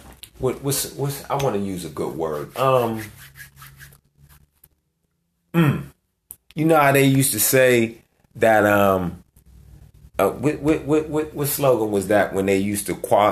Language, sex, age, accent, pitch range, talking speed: English, male, 30-49, American, 80-120 Hz, 150 wpm